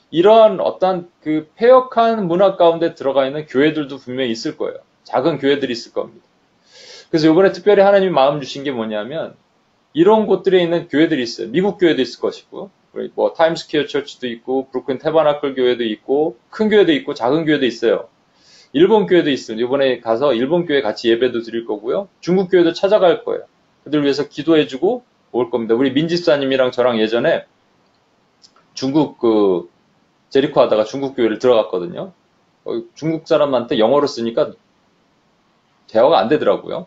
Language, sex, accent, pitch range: Korean, male, native, 125-180 Hz